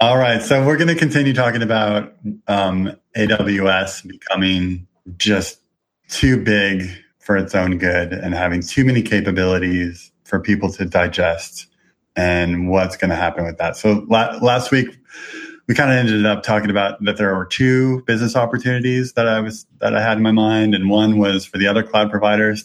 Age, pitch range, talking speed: 30-49, 95-110 Hz, 185 wpm